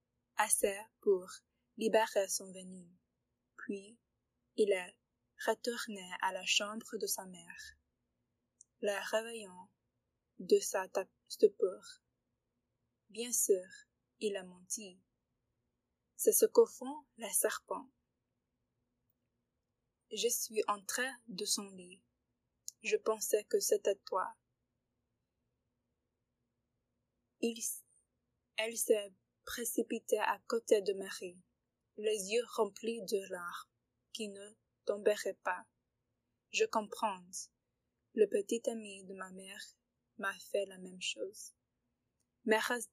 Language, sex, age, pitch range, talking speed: English, female, 20-39, 185-240 Hz, 100 wpm